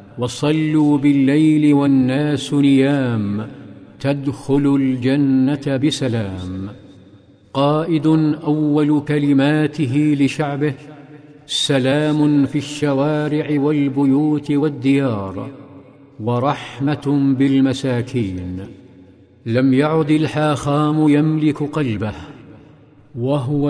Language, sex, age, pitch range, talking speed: Arabic, male, 50-69, 130-145 Hz, 60 wpm